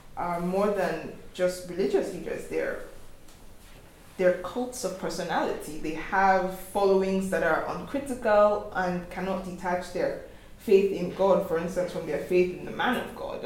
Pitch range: 170-190 Hz